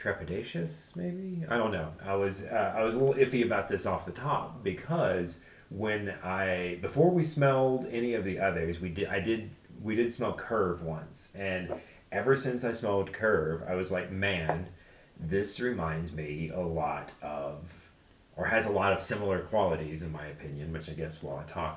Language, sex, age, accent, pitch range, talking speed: English, male, 30-49, American, 80-105 Hz, 190 wpm